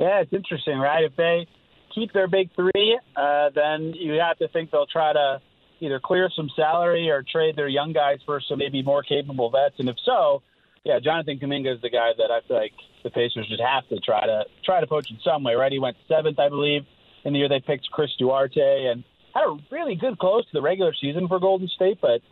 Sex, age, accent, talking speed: male, 30-49, American, 230 wpm